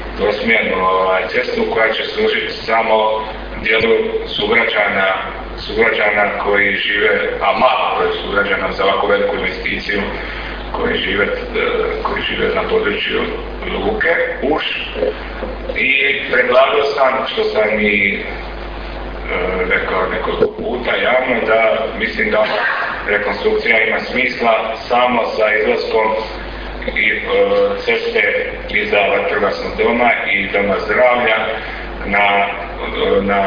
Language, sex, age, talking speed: Croatian, male, 40-59, 100 wpm